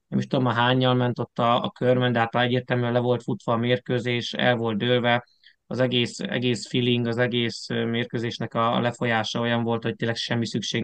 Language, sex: Hungarian, male